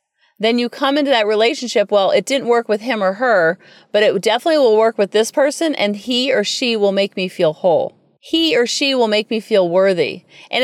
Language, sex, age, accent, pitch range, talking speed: English, female, 40-59, American, 205-275 Hz, 225 wpm